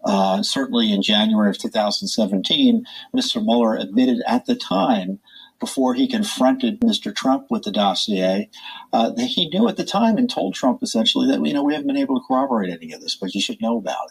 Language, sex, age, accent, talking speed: English, male, 50-69, American, 205 wpm